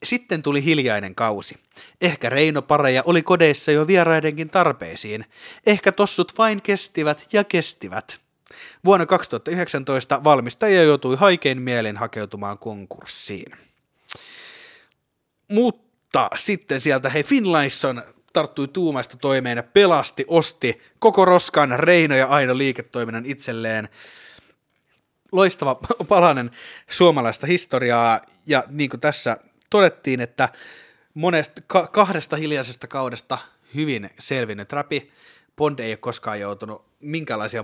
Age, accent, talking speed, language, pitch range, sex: 30-49, native, 105 wpm, Finnish, 120-165 Hz, male